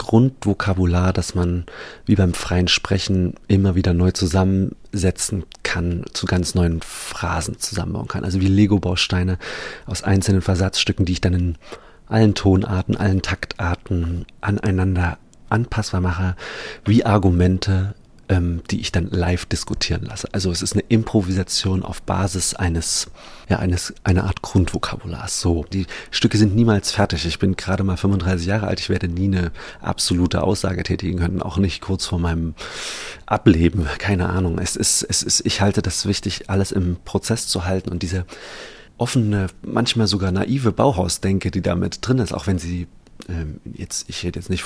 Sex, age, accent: male, 40-59, German